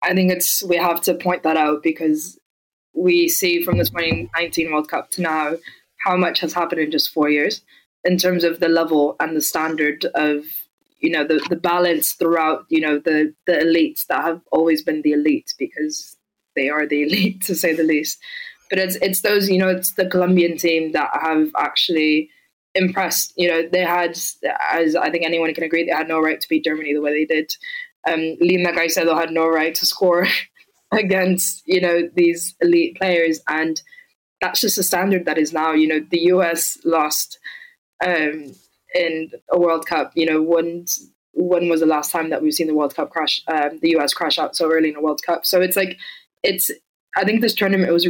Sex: female